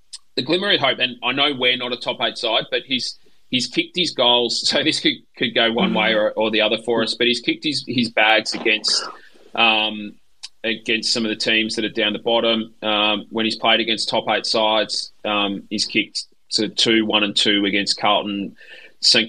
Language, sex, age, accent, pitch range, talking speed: English, male, 20-39, Australian, 105-120 Hz, 210 wpm